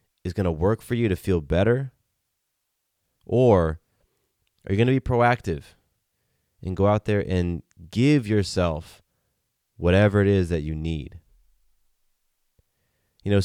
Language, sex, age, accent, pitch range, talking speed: English, male, 30-49, American, 90-120 Hz, 140 wpm